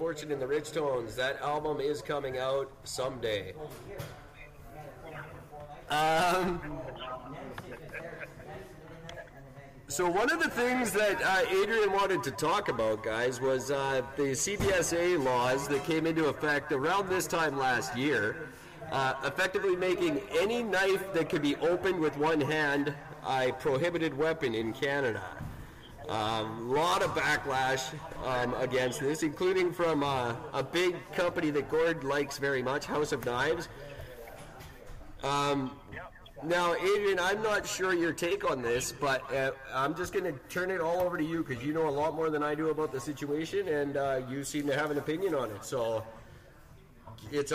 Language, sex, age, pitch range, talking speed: English, male, 40-59, 135-175 Hz, 155 wpm